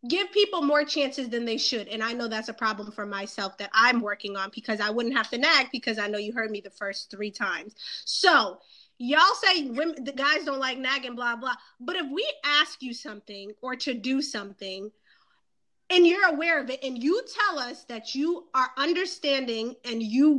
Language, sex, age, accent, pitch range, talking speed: English, female, 20-39, American, 230-300 Hz, 205 wpm